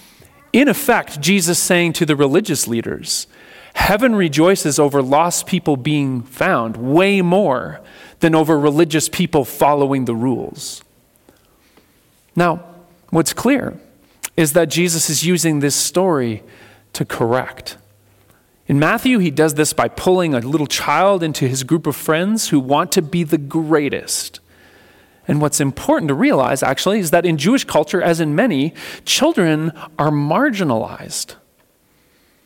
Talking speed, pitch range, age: 135 wpm, 150-195 Hz, 40-59